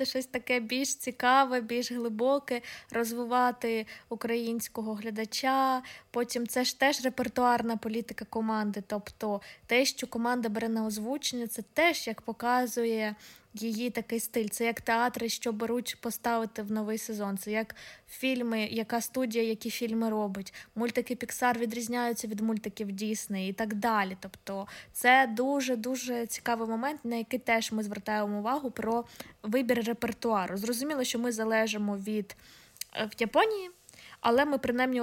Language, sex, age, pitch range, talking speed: Ukrainian, female, 20-39, 225-255 Hz, 135 wpm